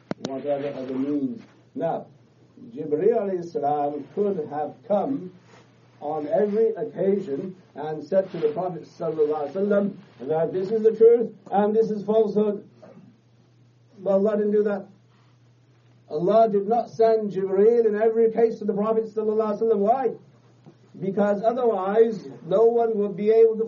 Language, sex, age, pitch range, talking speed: English, male, 60-79, 165-225 Hz, 130 wpm